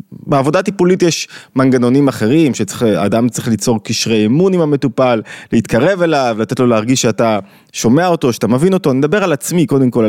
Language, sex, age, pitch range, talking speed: Hebrew, male, 20-39, 115-160 Hz, 170 wpm